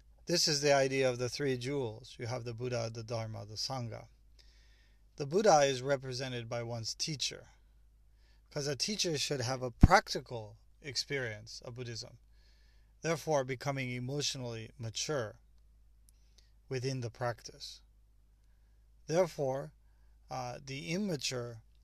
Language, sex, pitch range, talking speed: English, male, 115-140 Hz, 120 wpm